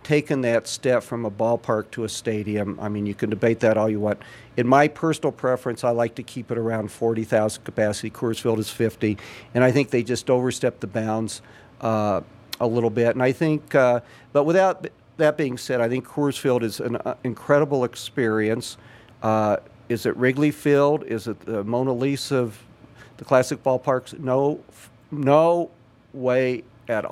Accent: American